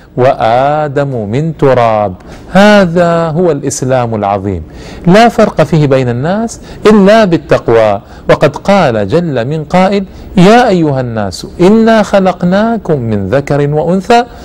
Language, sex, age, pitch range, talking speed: Arabic, male, 50-69, 130-190 Hz, 110 wpm